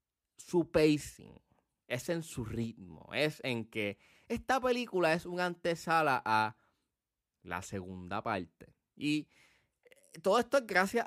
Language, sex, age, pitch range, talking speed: Spanish, male, 20-39, 105-150 Hz, 125 wpm